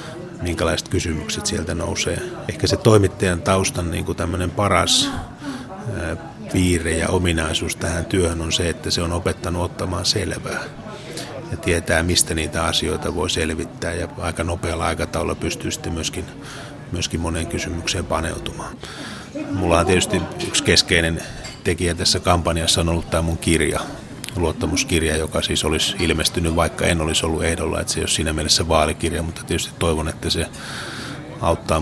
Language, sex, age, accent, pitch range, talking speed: Finnish, male, 30-49, native, 80-90 Hz, 145 wpm